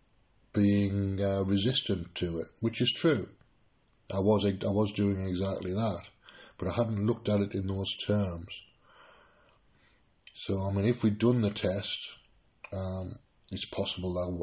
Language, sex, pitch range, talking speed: English, male, 90-105 Hz, 150 wpm